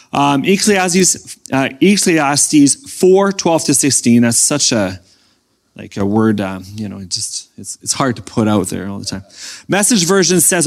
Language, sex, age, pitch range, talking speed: English, male, 30-49, 135-205 Hz, 175 wpm